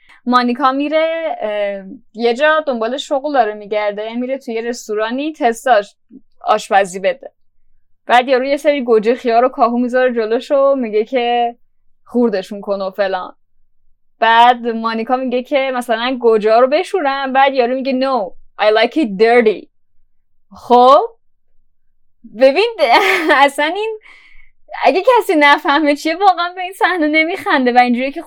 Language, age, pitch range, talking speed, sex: Persian, 10-29, 225-295 Hz, 135 wpm, female